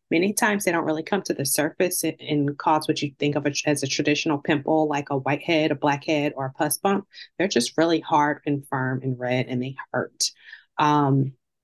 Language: English